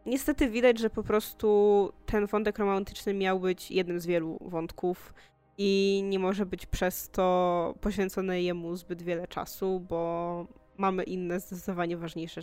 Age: 20-39